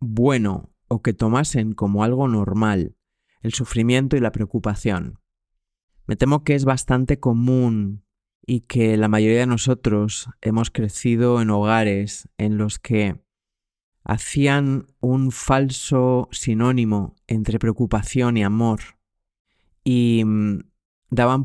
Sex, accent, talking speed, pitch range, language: male, Spanish, 115 wpm, 100-120 Hz, Spanish